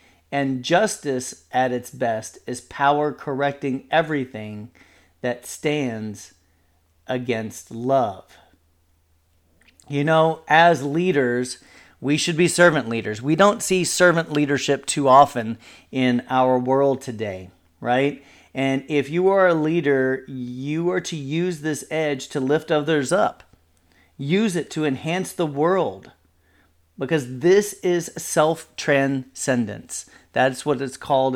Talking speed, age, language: 120 wpm, 40-59, English